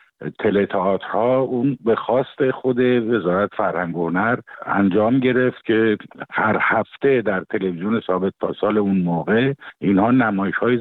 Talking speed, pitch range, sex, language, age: 120 wpm, 100-125 Hz, male, Persian, 50-69